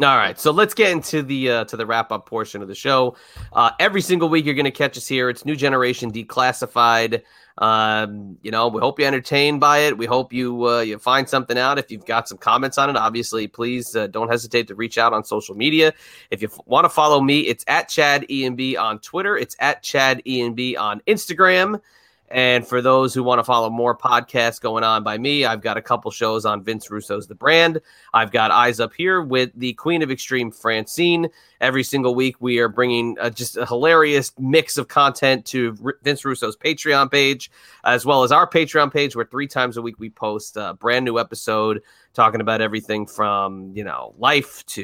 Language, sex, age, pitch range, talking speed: English, male, 30-49, 115-140 Hz, 215 wpm